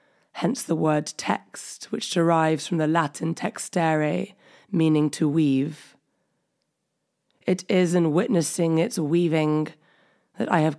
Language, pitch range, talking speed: English, 155-175 Hz, 120 wpm